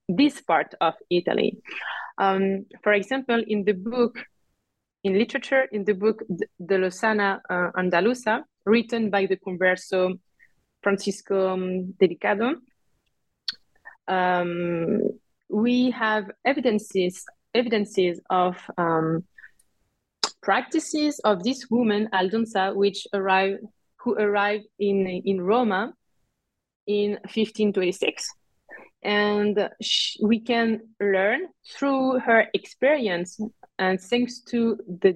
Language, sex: English, female